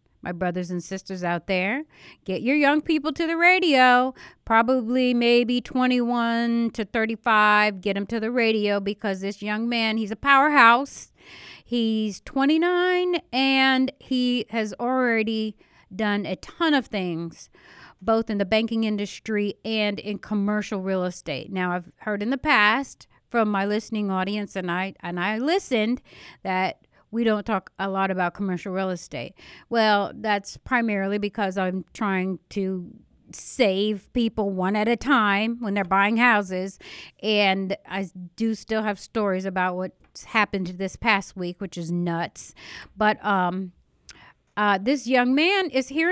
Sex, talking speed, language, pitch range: female, 150 wpm, English, 195-255 Hz